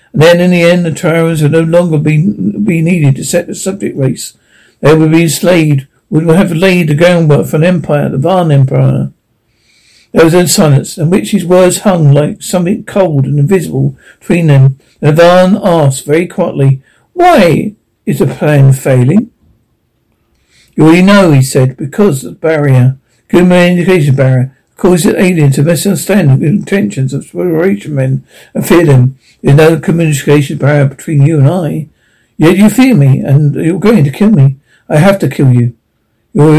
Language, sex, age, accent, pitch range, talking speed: English, male, 60-79, British, 145-185 Hz, 180 wpm